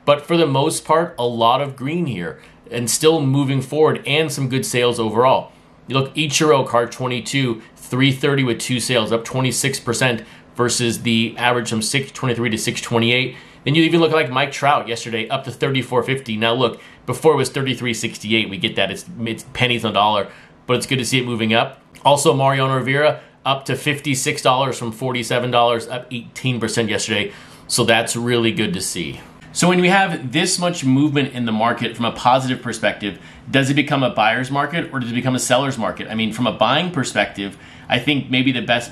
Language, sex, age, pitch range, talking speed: English, male, 30-49, 115-145 Hz, 195 wpm